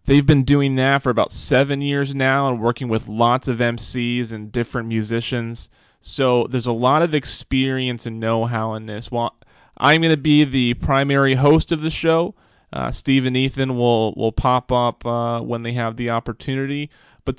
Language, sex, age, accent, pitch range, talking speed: English, male, 30-49, American, 110-130 Hz, 185 wpm